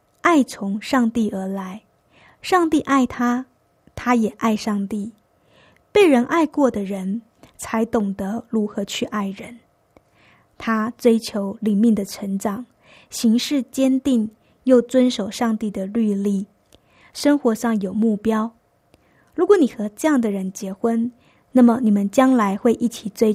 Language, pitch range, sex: Chinese, 205-250 Hz, female